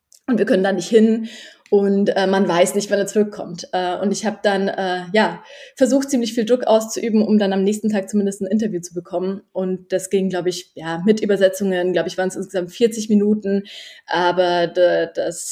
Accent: German